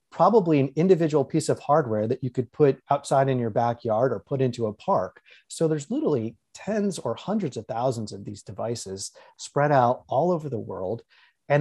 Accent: American